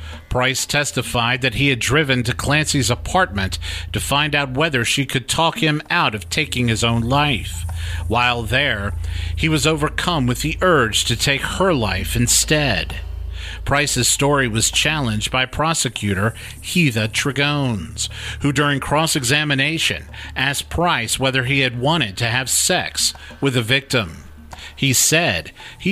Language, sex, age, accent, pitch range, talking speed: English, male, 50-69, American, 100-140 Hz, 145 wpm